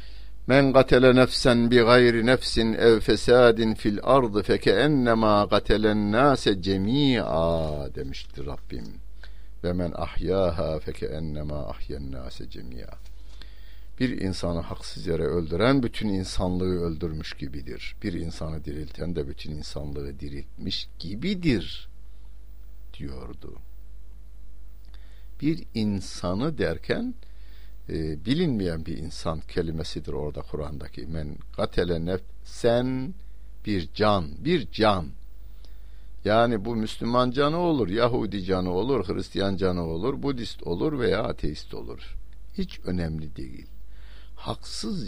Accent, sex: native, male